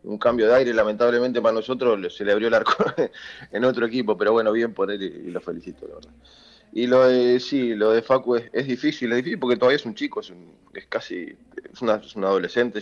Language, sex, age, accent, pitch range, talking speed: Spanish, male, 20-39, Argentinian, 105-120 Hz, 245 wpm